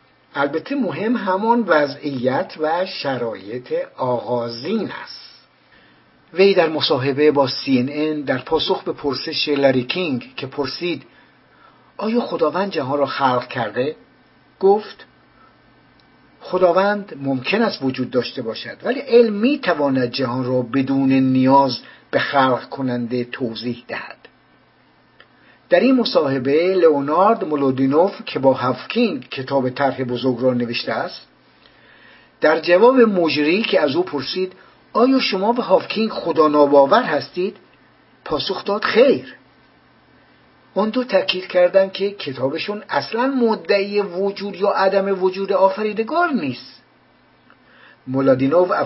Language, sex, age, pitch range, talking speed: English, male, 60-79, 135-200 Hz, 110 wpm